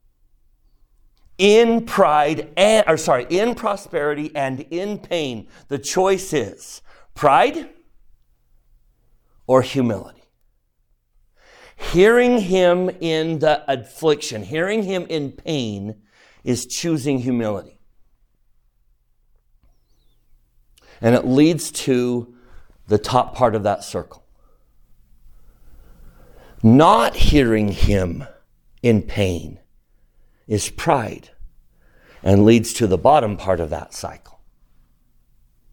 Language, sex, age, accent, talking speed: English, male, 50-69, American, 90 wpm